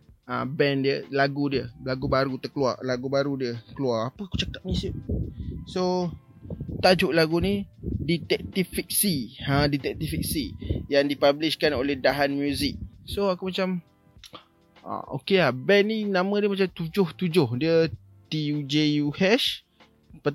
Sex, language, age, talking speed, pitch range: male, Malay, 20-39, 140 wpm, 140-175 Hz